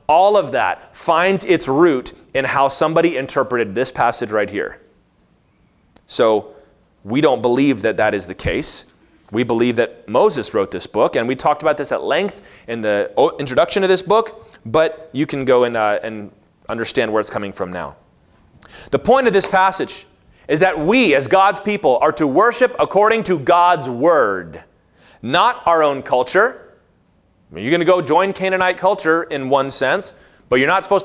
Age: 30-49